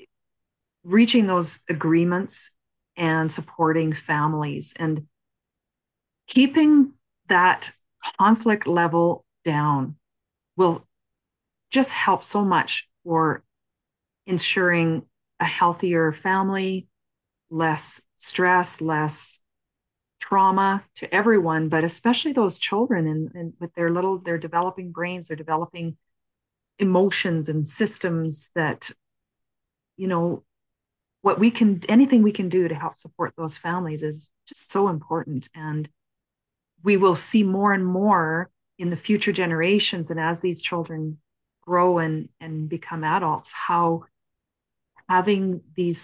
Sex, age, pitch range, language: female, 40-59, 155-190 Hz, English